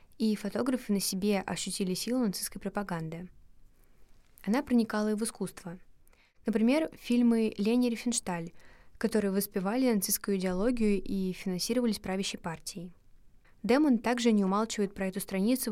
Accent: native